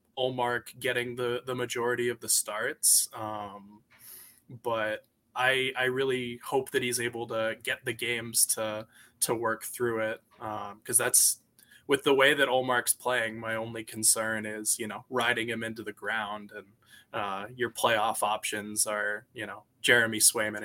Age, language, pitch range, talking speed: 20-39, English, 110-125 Hz, 165 wpm